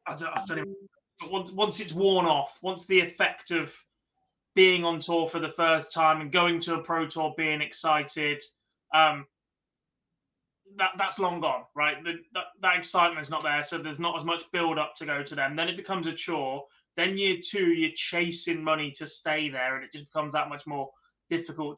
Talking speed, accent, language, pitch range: 185 wpm, British, English, 145-175 Hz